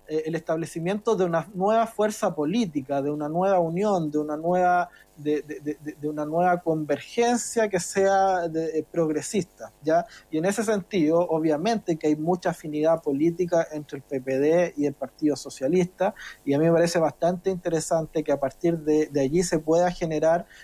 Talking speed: 175 wpm